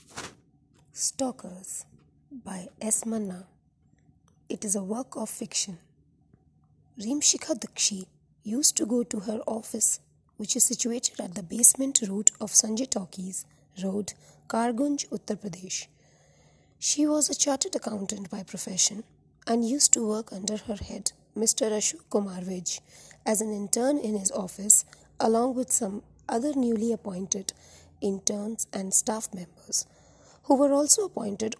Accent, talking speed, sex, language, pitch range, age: native, 135 wpm, female, Hindi, 210-250 Hz, 20-39